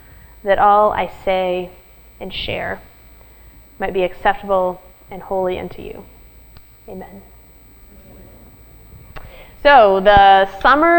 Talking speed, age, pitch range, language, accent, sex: 95 wpm, 20-39, 195-245 Hz, English, American, female